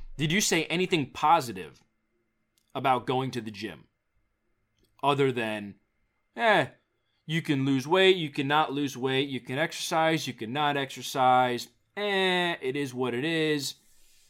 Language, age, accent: English, 30-49, American